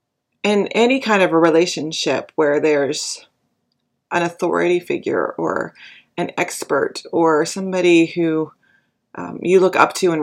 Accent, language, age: American, English, 30-49